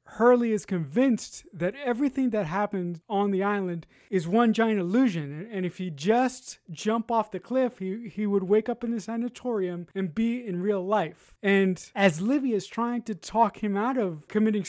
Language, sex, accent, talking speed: English, male, American, 190 wpm